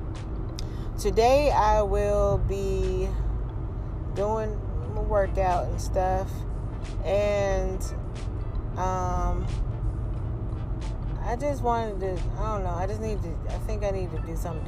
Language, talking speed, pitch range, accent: English, 120 wpm, 105-120 Hz, American